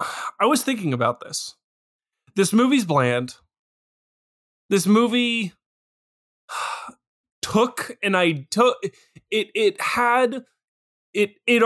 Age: 20-39